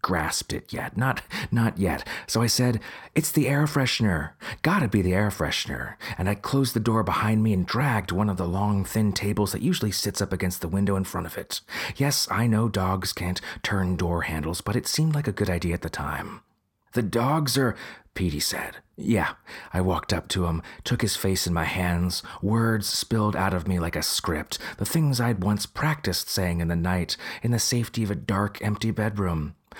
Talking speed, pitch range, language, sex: 210 wpm, 90-125 Hz, English, male